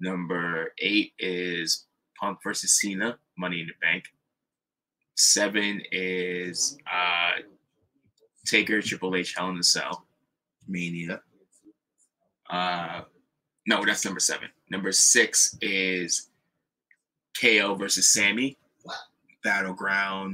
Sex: male